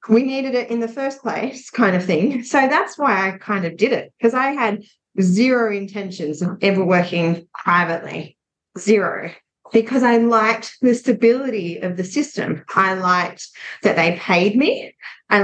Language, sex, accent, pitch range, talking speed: English, female, Australian, 185-235 Hz, 165 wpm